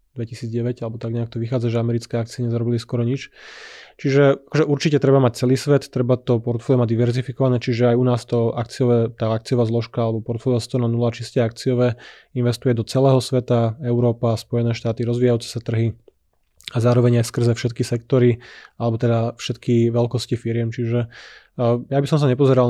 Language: Slovak